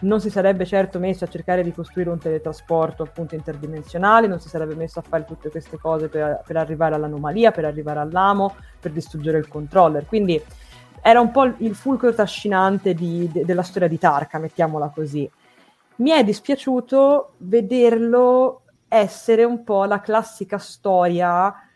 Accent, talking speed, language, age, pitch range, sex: native, 155 wpm, Italian, 20-39, 160-205 Hz, female